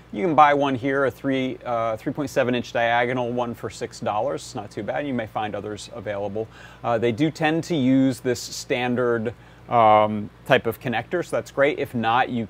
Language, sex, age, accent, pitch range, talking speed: English, male, 30-49, American, 115-145 Hz, 195 wpm